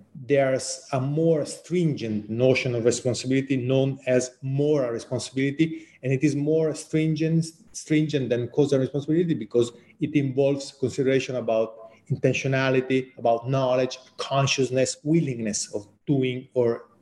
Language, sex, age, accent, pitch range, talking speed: English, male, 30-49, Italian, 120-145 Hz, 115 wpm